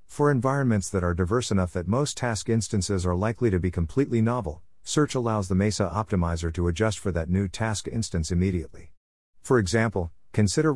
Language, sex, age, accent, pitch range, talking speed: English, male, 50-69, American, 90-115 Hz, 180 wpm